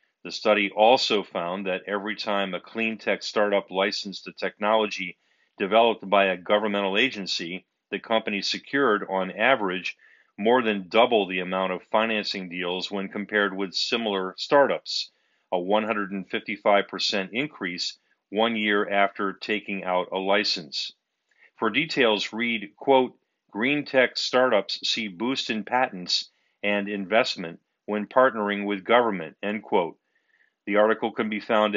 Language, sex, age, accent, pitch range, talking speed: English, male, 40-59, American, 100-115 Hz, 135 wpm